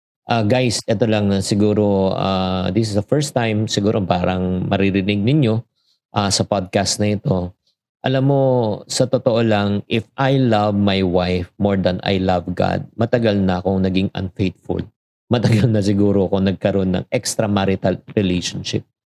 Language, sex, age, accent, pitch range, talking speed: Filipino, male, 50-69, native, 100-125 Hz, 155 wpm